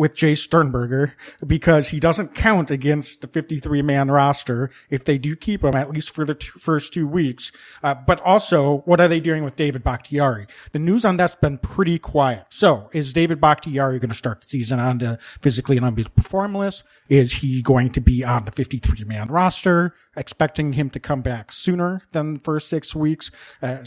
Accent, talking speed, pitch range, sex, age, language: American, 190 wpm, 135-165 Hz, male, 40-59, English